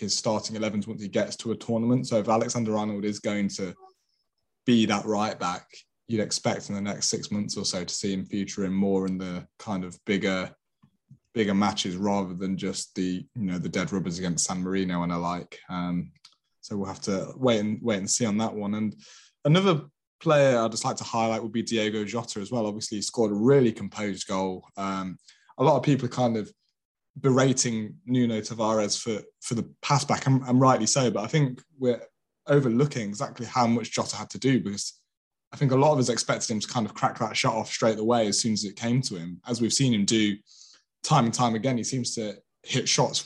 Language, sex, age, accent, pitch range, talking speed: English, male, 20-39, British, 105-125 Hz, 225 wpm